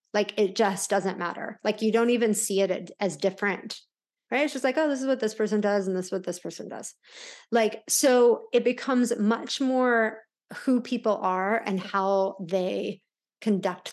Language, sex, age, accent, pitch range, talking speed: English, female, 30-49, American, 195-245 Hz, 190 wpm